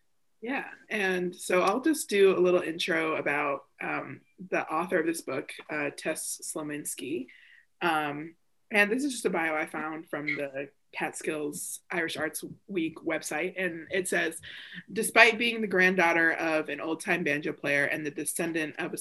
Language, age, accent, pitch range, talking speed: English, 20-39, American, 155-190 Hz, 165 wpm